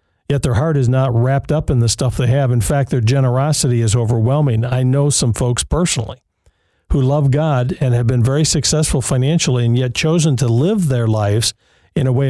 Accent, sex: American, male